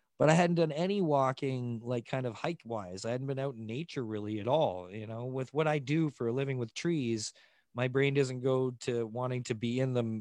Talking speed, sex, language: 240 wpm, male, English